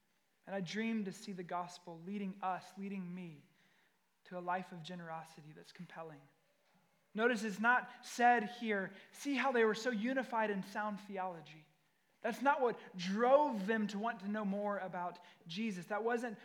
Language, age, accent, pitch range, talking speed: English, 20-39, American, 185-225 Hz, 170 wpm